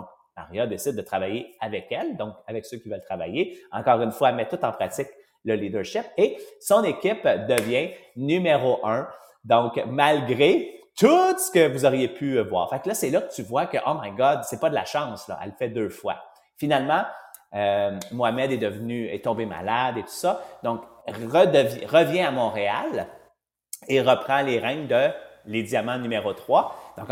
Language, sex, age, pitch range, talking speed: English, male, 30-49, 115-150 Hz, 190 wpm